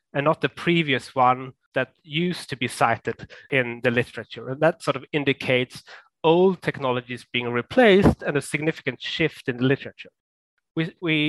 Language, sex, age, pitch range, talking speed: German, male, 30-49, 125-150 Hz, 160 wpm